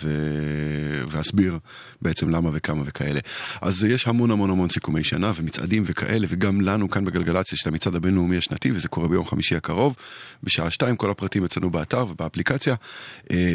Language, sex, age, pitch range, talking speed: Hebrew, male, 20-39, 80-100 Hz, 150 wpm